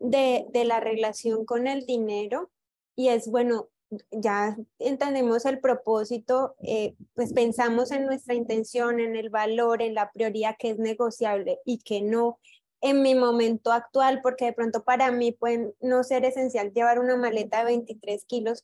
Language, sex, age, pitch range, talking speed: Spanish, female, 20-39, 220-255 Hz, 165 wpm